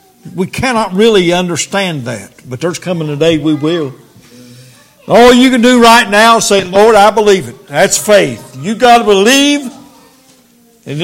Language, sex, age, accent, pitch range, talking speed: English, male, 60-79, American, 155-210 Hz, 170 wpm